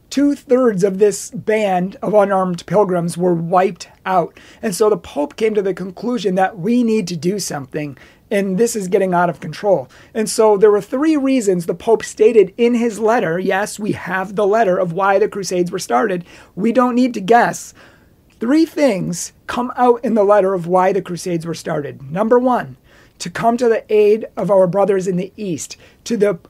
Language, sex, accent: English, male, American